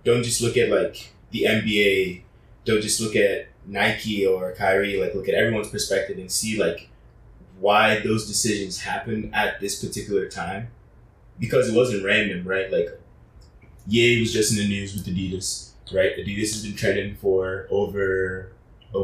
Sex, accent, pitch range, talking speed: male, American, 95-120 Hz, 165 wpm